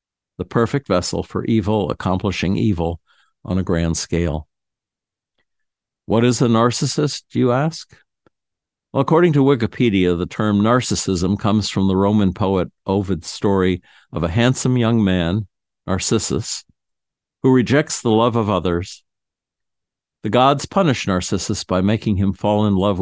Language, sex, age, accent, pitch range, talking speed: English, male, 60-79, American, 90-115 Hz, 135 wpm